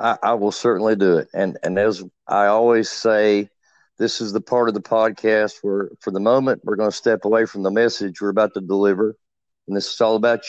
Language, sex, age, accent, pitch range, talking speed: English, male, 50-69, American, 110-130 Hz, 225 wpm